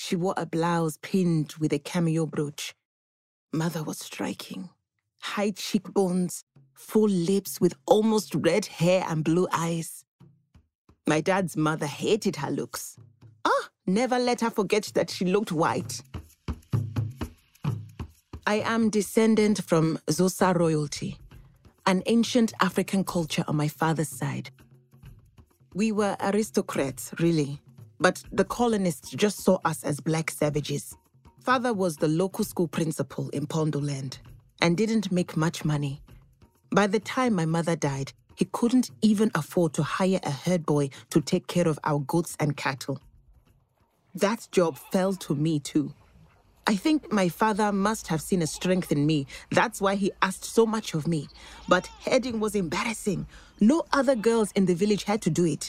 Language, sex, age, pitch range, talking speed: English, female, 30-49, 145-195 Hz, 150 wpm